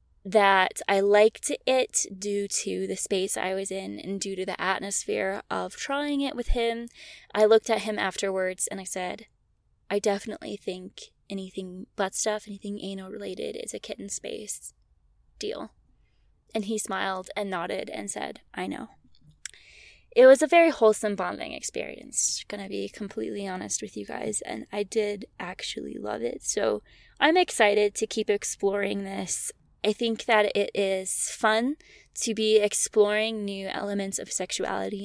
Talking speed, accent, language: 160 wpm, American, English